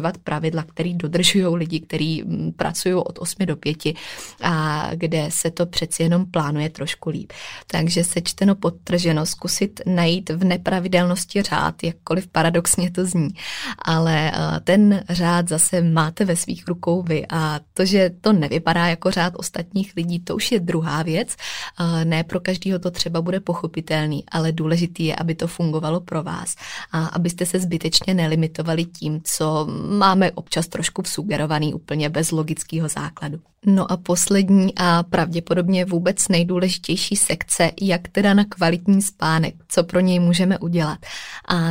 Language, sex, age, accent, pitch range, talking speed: Czech, female, 20-39, native, 160-185 Hz, 150 wpm